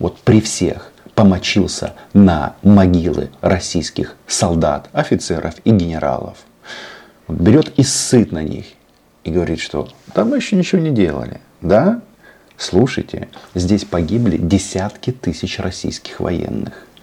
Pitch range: 85-110 Hz